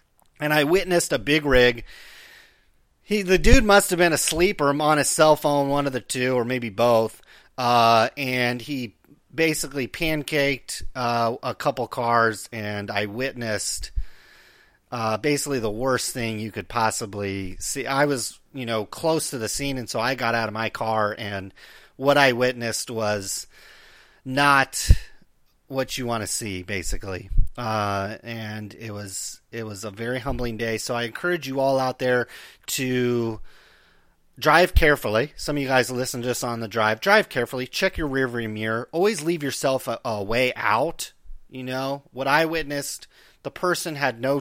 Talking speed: 170 wpm